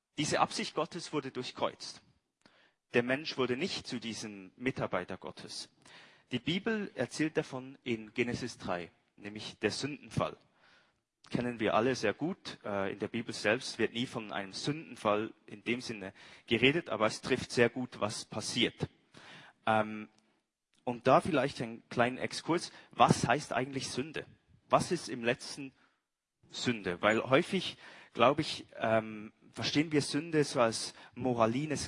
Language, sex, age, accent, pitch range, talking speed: German, male, 30-49, German, 110-135 Hz, 135 wpm